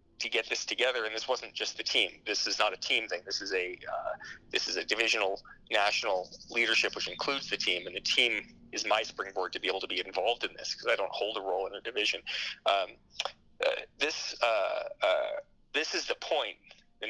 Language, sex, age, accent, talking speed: English, male, 30-49, American, 220 wpm